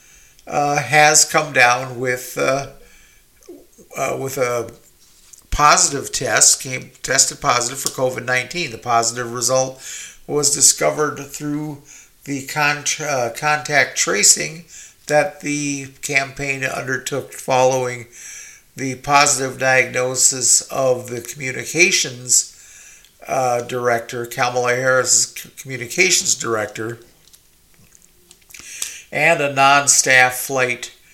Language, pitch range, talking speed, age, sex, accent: English, 120-145 Hz, 95 wpm, 50-69, male, American